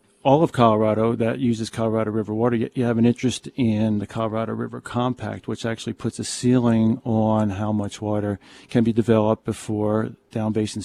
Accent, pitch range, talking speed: American, 110-125 Hz, 175 wpm